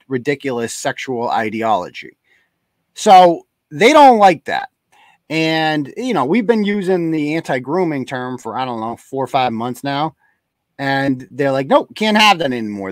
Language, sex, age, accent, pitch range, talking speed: English, male, 30-49, American, 130-195 Hz, 160 wpm